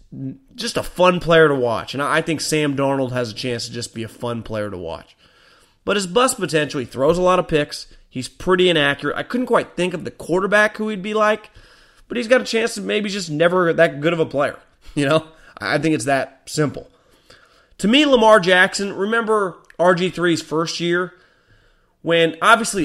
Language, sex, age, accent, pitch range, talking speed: English, male, 30-49, American, 150-195 Hz, 200 wpm